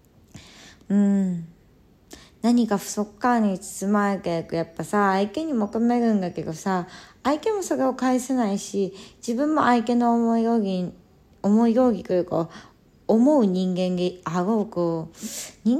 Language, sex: Japanese, female